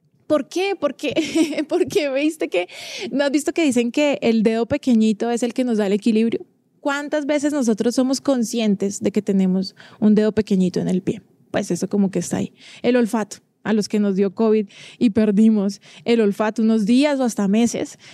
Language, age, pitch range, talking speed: Spanish, 20-39, 210-265 Hz, 200 wpm